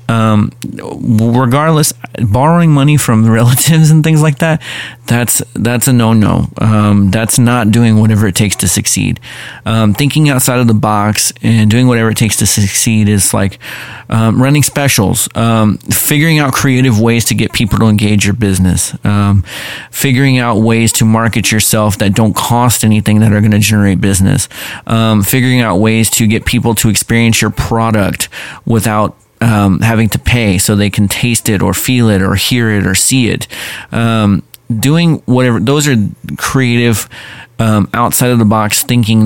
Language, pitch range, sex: English, 105-125 Hz, male